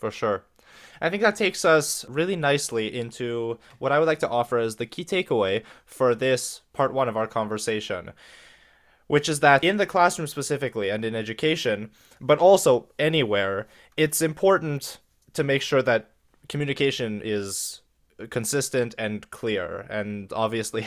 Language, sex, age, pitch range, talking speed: English, male, 20-39, 110-145 Hz, 150 wpm